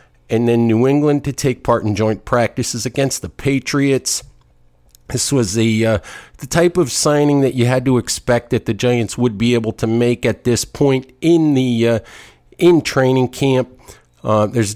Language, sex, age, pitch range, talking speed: English, male, 50-69, 115-135 Hz, 185 wpm